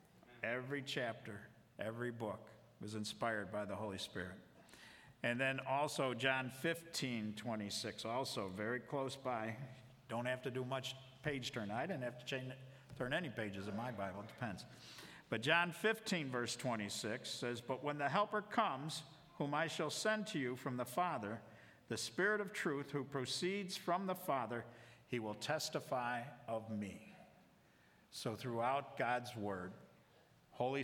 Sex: male